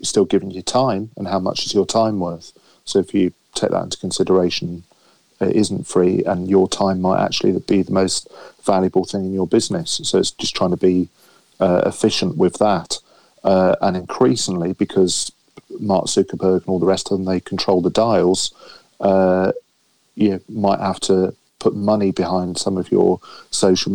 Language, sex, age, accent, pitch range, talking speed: English, male, 40-59, British, 90-95 Hz, 180 wpm